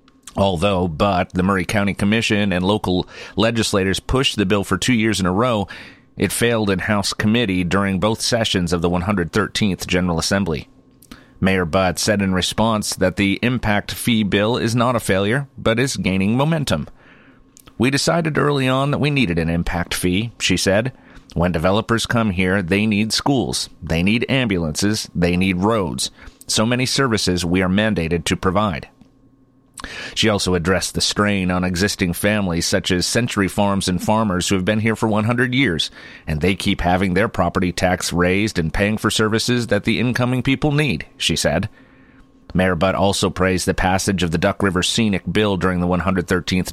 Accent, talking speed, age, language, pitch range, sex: American, 175 wpm, 40-59, English, 90-115 Hz, male